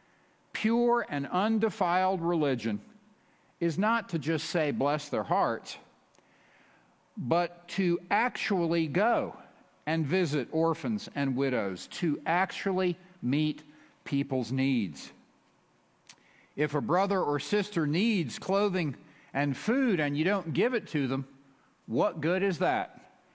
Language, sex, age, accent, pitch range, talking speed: English, male, 50-69, American, 145-190 Hz, 120 wpm